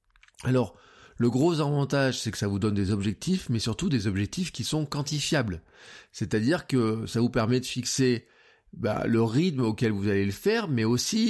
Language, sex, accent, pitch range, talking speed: French, male, French, 105-130 Hz, 185 wpm